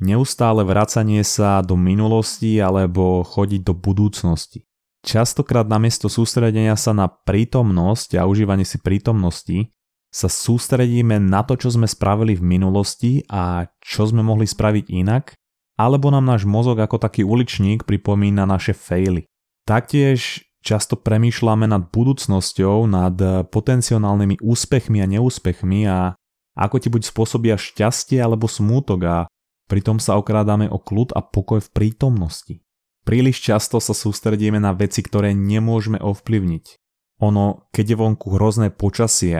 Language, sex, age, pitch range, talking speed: Slovak, male, 20-39, 95-115 Hz, 130 wpm